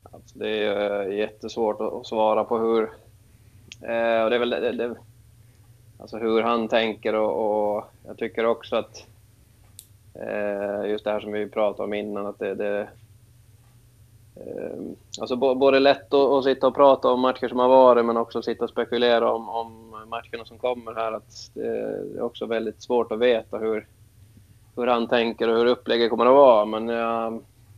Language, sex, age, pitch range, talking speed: Swedish, male, 20-39, 110-115 Hz, 175 wpm